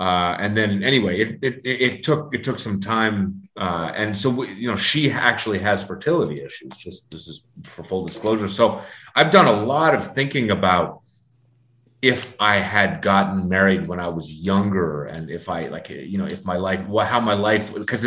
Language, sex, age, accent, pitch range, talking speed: English, male, 30-49, American, 90-110 Hz, 200 wpm